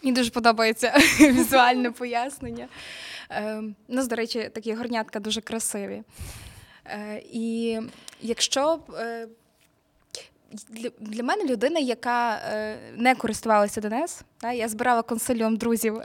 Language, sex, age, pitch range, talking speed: Ukrainian, female, 20-39, 215-250 Hz, 110 wpm